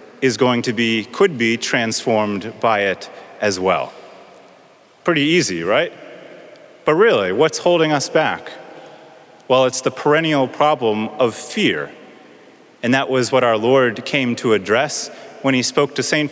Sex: male